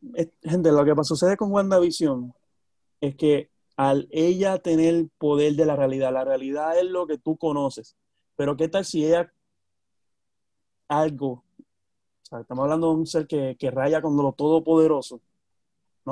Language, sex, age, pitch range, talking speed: Spanish, male, 30-49, 125-160 Hz, 155 wpm